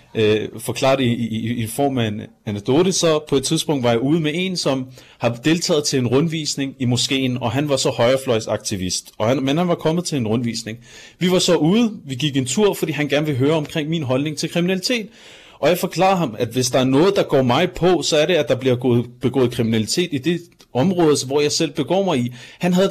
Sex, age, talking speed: male, 30-49, 230 wpm